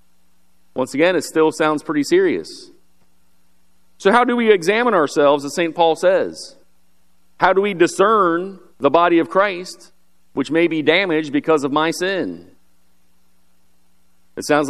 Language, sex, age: English, male, 40-59